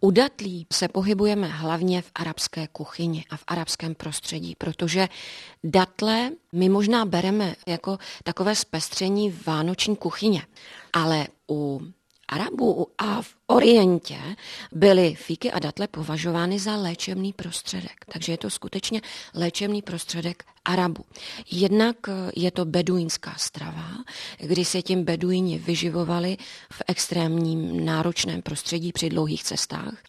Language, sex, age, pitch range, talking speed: Czech, female, 30-49, 165-195 Hz, 120 wpm